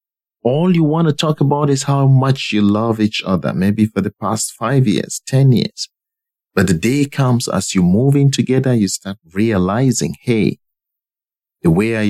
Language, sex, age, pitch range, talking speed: English, male, 50-69, 105-130 Hz, 185 wpm